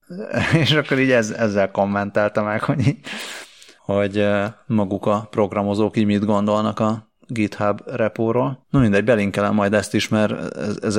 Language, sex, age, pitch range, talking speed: Hungarian, male, 30-49, 95-105 Hz, 140 wpm